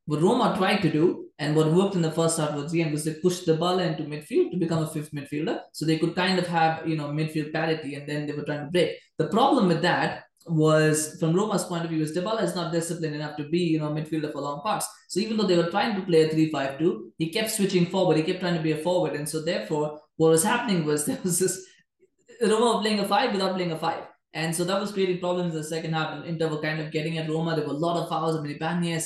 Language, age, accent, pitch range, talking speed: English, 20-39, Indian, 155-180 Hz, 275 wpm